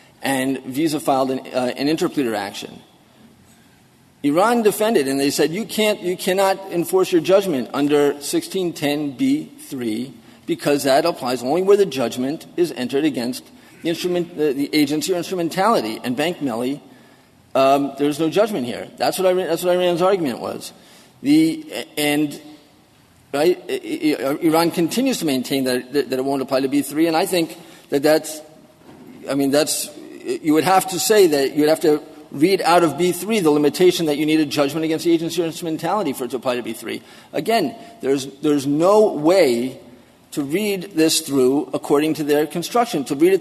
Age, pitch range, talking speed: 40-59, 145-185 Hz, 175 wpm